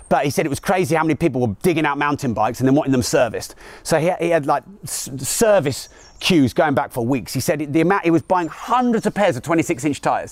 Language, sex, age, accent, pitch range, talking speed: English, male, 30-49, British, 130-170 Hz, 250 wpm